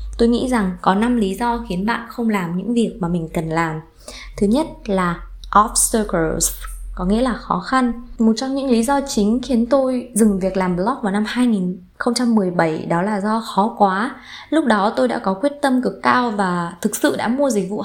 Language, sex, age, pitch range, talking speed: Vietnamese, female, 20-39, 185-255 Hz, 210 wpm